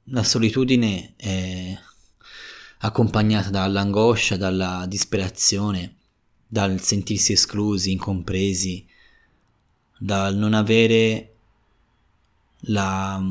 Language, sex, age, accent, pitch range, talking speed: Italian, male, 20-39, native, 95-115 Hz, 70 wpm